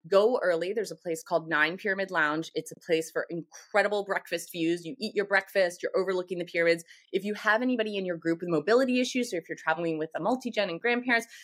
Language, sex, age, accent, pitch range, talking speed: English, female, 20-39, American, 160-205 Hz, 225 wpm